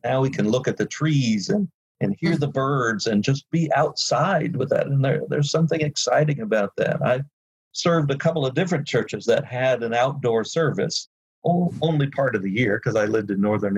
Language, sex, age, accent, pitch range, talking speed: English, male, 50-69, American, 115-150 Hz, 205 wpm